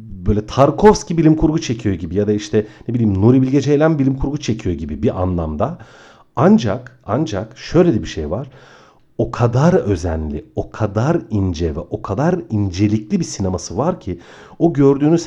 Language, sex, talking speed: Turkish, male, 170 wpm